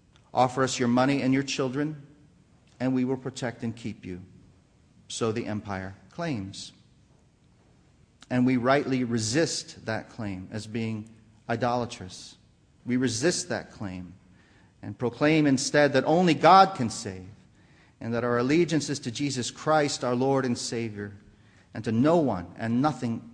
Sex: male